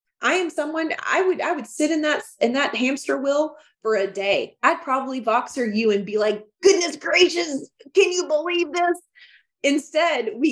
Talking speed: 185 wpm